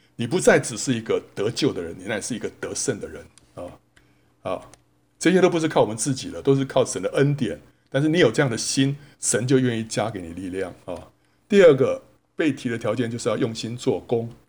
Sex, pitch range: male, 100-135 Hz